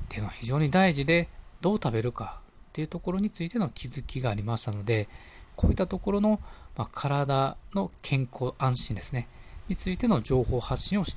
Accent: native